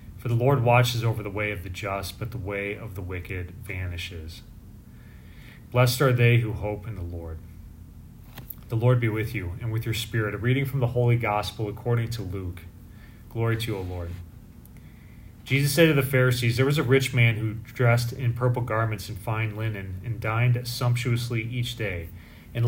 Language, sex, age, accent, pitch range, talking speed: English, male, 30-49, American, 100-120 Hz, 190 wpm